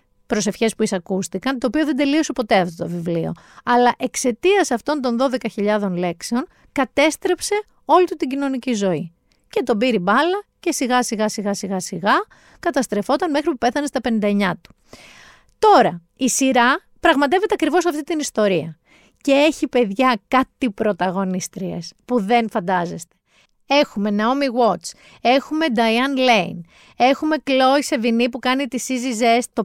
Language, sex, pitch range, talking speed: Greek, female, 210-270 Hz, 145 wpm